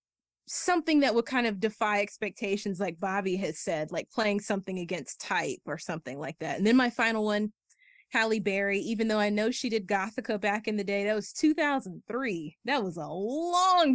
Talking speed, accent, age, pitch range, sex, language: 195 wpm, American, 20-39, 180-215 Hz, female, English